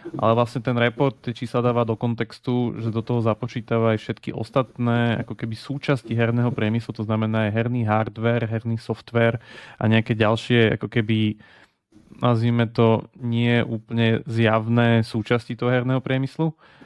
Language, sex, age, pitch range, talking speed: Slovak, male, 30-49, 110-125 Hz, 150 wpm